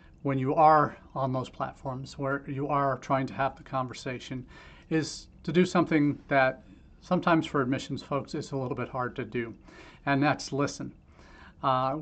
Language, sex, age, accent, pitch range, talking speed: English, male, 40-59, American, 130-145 Hz, 170 wpm